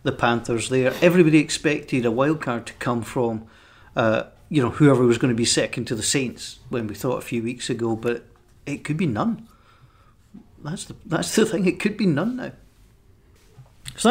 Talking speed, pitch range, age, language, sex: 195 wpm, 125-175 Hz, 40-59, English, male